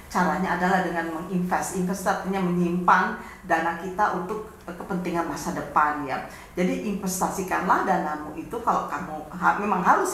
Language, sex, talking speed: Indonesian, female, 130 wpm